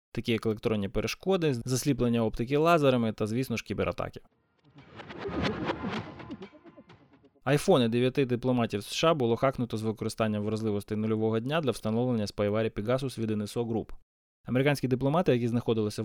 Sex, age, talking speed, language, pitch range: male, 20-39, 125 wpm, Ukrainian, 110-135 Hz